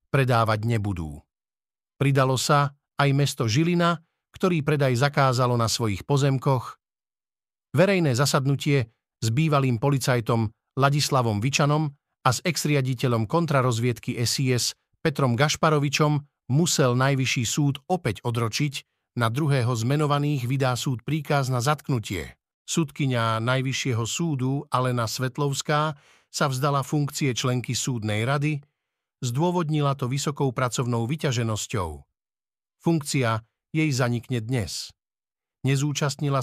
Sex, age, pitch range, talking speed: male, 50-69, 115-150 Hz, 100 wpm